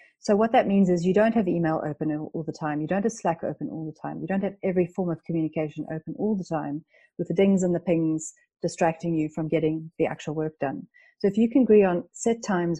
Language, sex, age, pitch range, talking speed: English, female, 40-59, 160-190 Hz, 255 wpm